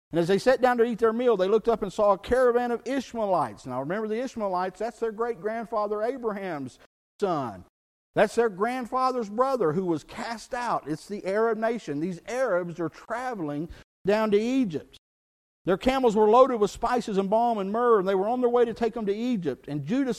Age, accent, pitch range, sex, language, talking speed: 50-69, American, 145-220 Hz, male, English, 205 wpm